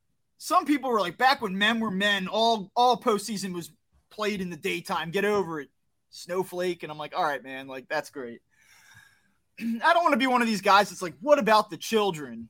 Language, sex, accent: English, male, American